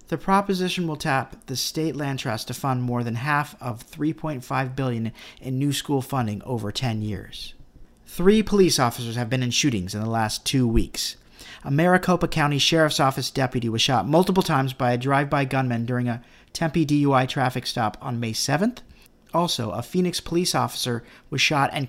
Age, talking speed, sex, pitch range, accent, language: 50-69, 180 wpm, male, 120-165 Hz, American, English